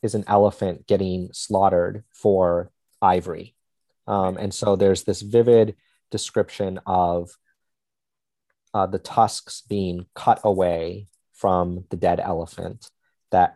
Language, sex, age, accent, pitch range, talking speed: English, male, 30-49, American, 90-115 Hz, 115 wpm